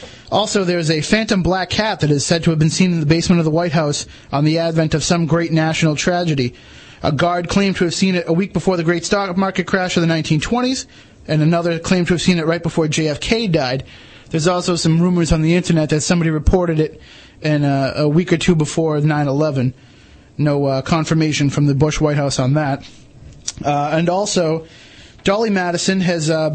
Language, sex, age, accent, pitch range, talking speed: English, male, 30-49, American, 150-175 Hz, 210 wpm